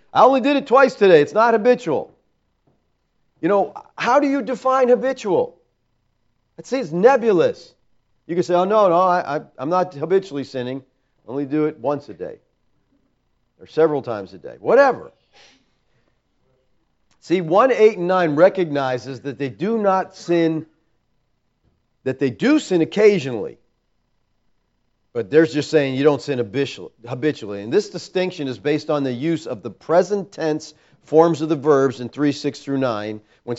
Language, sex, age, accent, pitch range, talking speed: English, male, 50-69, American, 135-185 Hz, 155 wpm